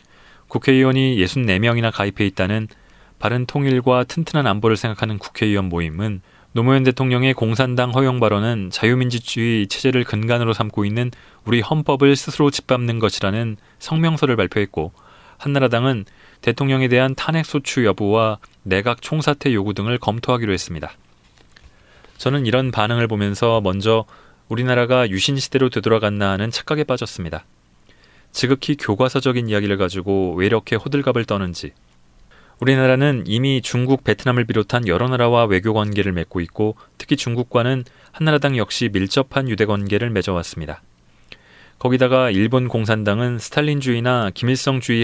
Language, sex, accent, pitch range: Korean, male, native, 100-130 Hz